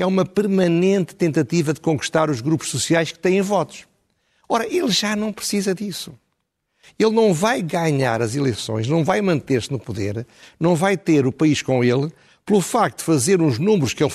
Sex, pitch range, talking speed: male, 135-185 Hz, 185 wpm